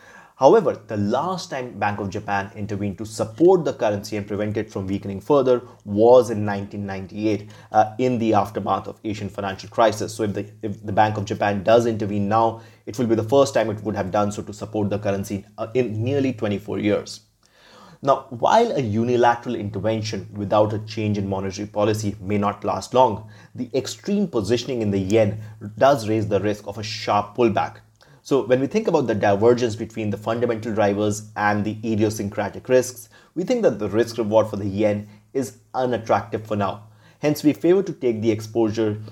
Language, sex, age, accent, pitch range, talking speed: English, male, 30-49, Indian, 105-120 Hz, 190 wpm